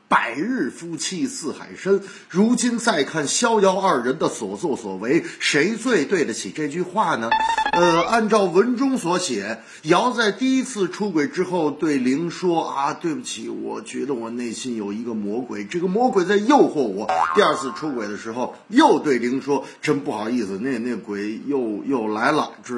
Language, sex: Chinese, male